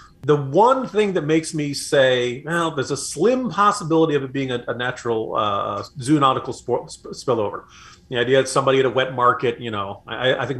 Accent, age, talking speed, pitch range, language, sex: American, 40-59, 205 wpm, 120-160 Hz, English, male